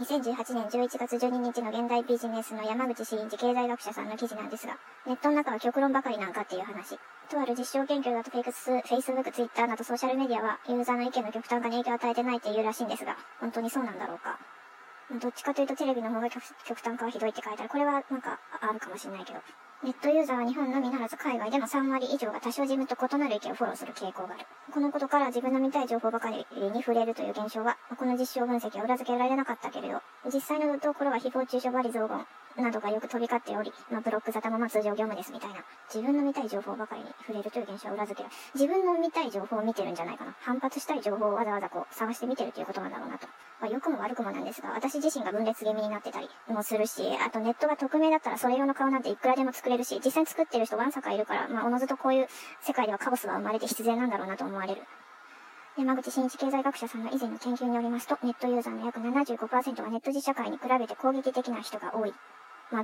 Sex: male